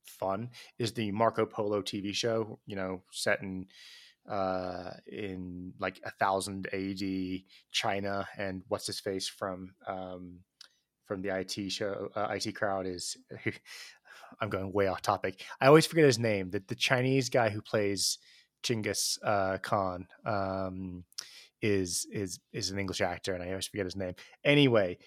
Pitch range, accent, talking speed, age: 95-110 Hz, American, 155 wpm, 20-39